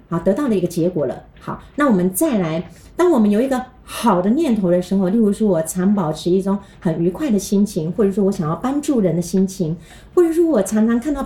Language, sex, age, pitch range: Chinese, female, 30-49, 180-235 Hz